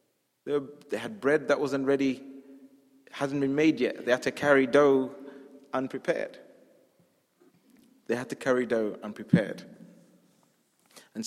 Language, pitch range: English, 100-135 Hz